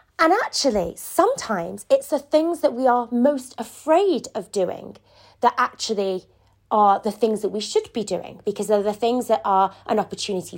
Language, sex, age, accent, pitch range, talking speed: English, female, 30-49, British, 195-260 Hz, 175 wpm